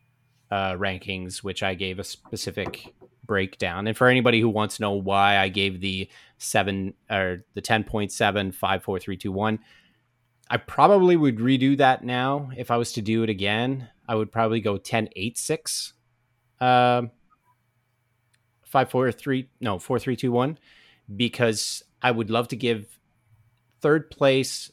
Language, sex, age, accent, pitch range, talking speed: English, male, 30-49, American, 100-125 Hz, 165 wpm